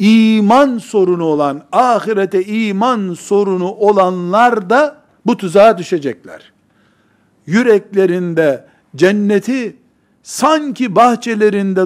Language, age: Turkish, 60-79